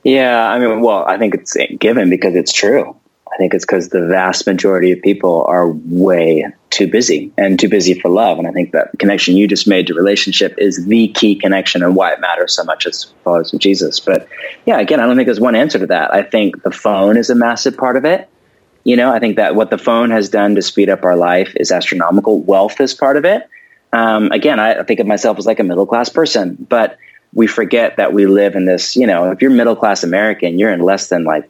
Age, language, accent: 30-49, English, American